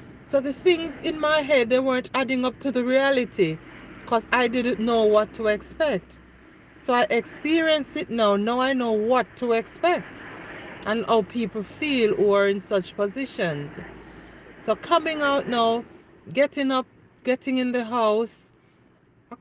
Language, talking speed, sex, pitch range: English, 160 wpm, female, 200-275 Hz